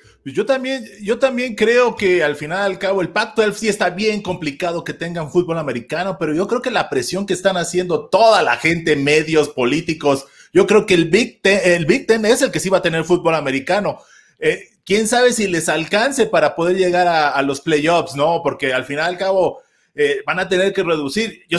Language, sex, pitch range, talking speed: Spanish, male, 150-195 Hz, 220 wpm